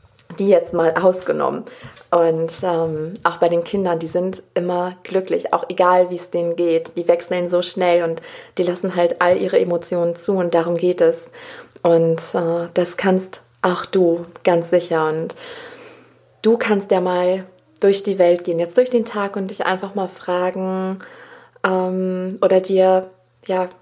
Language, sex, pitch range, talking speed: German, female, 175-205 Hz, 165 wpm